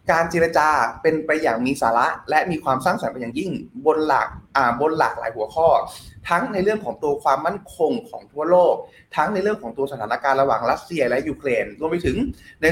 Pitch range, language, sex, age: 135-170 Hz, Thai, male, 20-39